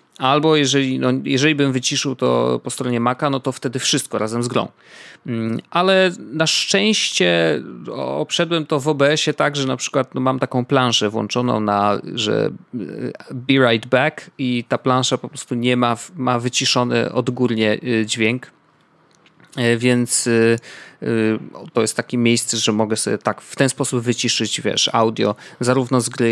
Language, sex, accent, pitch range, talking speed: Polish, male, native, 115-140 Hz, 150 wpm